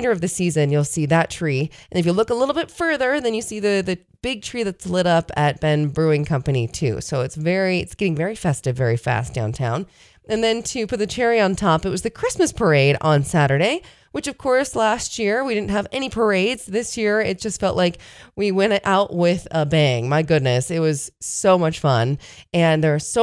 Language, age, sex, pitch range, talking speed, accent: English, 20-39, female, 145-220 Hz, 225 wpm, American